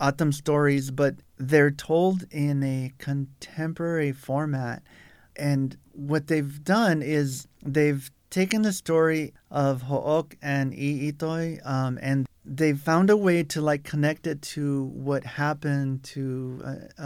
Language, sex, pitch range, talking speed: English, male, 130-155 Hz, 125 wpm